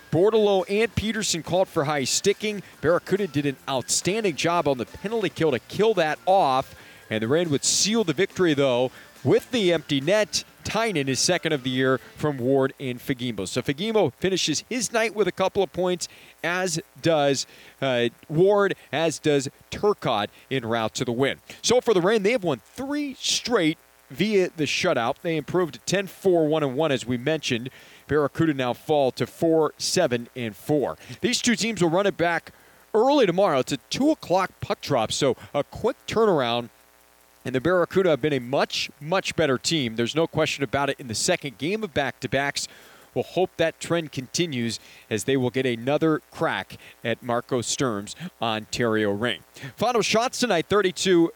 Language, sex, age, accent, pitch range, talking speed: English, male, 40-59, American, 130-185 Hz, 175 wpm